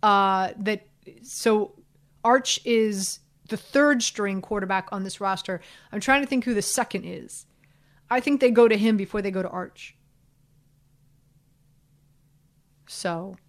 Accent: American